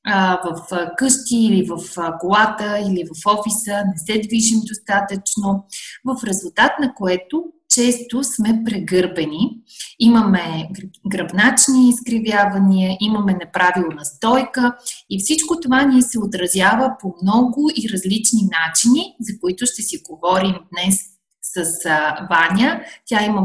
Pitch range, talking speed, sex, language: 195-245 Hz, 120 wpm, female, Bulgarian